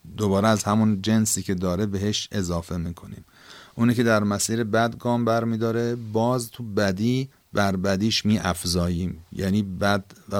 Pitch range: 95-110 Hz